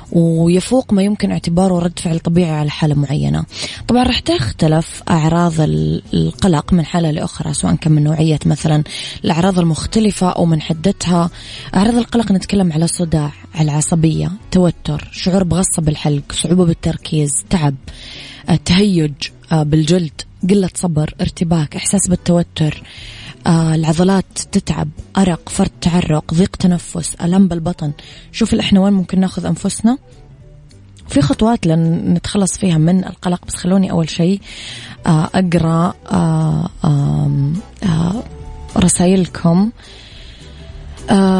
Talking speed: 110 wpm